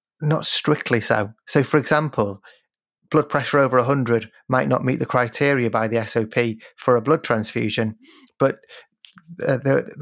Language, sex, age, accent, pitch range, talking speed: English, male, 30-49, British, 120-145 Hz, 145 wpm